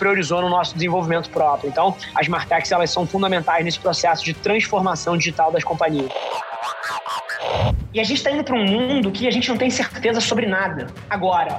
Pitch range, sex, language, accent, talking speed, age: 190-245 Hz, male, Portuguese, Brazilian, 180 wpm, 20-39